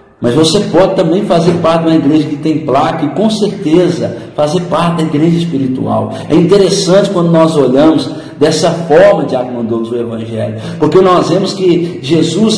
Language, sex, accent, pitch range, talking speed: Portuguese, male, Brazilian, 130-180 Hz, 170 wpm